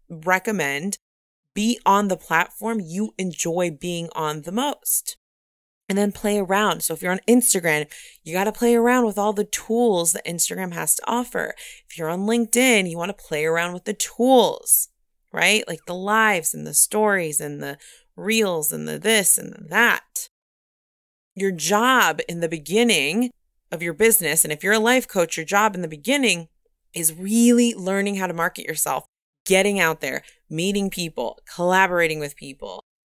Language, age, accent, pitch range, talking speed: English, 20-39, American, 165-220 Hz, 175 wpm